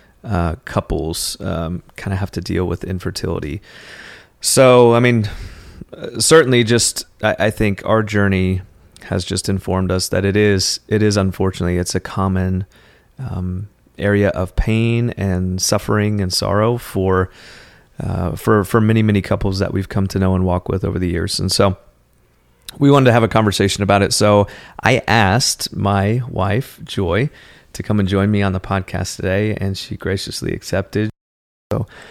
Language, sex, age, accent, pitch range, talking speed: English, male, 30-49, American, 95-105 Hz, 165 wpm